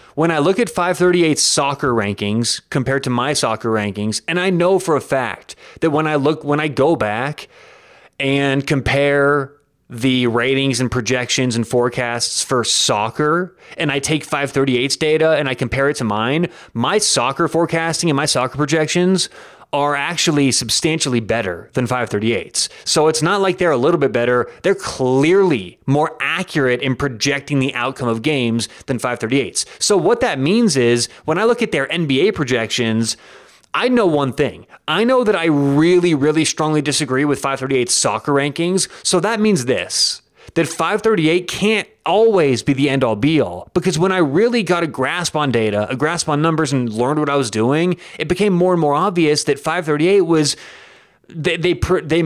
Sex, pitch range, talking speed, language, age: male, 130-165 Hz, 175 wpm, English, 30-49